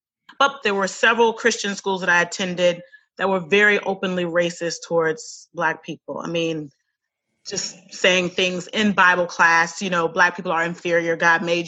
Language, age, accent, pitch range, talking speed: English, 30-49, American, 175-210 Hz, 170 wpm